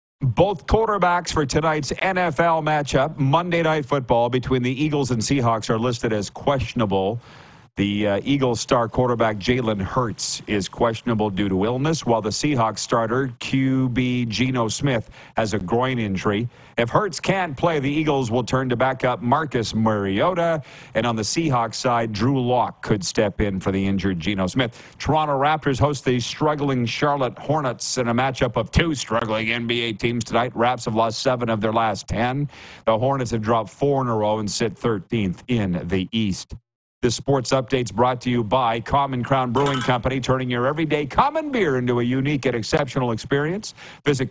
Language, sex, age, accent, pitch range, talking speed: English, male, 50-69, American, 115-145 Hz, 175 wpm